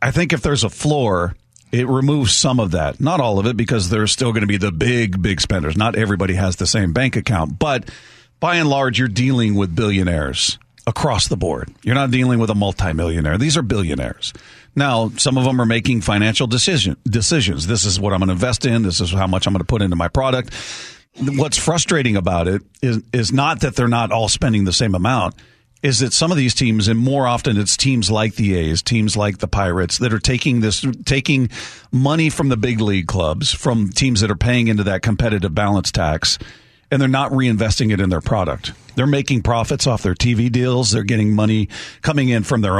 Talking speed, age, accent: 220 wpm, 40-59, American